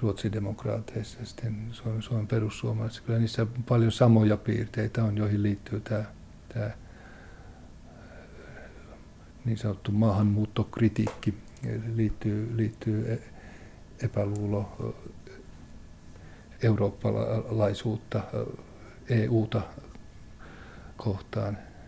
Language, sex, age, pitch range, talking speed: Finnish, male, 60-79, 105-115 Hz, 65 wpm